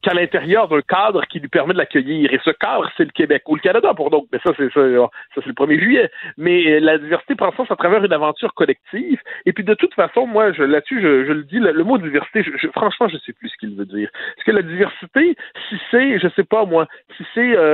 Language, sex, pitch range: French, male, 150-220 Hz